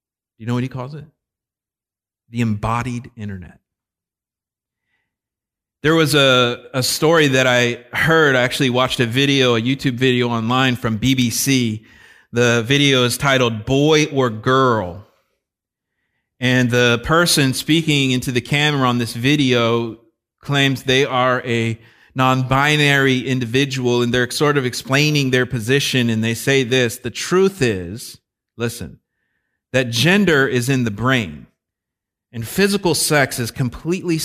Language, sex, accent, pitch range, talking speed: English, male, American, 115-140 Hz, 135 wpm